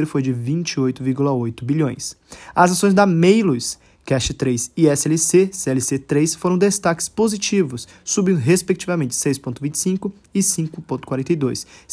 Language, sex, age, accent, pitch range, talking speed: Portuguese, male, 20-39, Brazilian, 140-190 Hz, 110 wpm